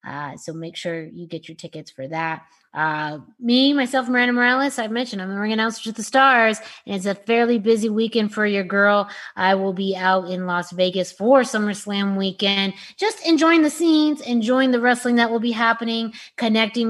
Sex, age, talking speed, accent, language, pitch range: female, 20-39, 195 wpm, American, English, 185-230 Hz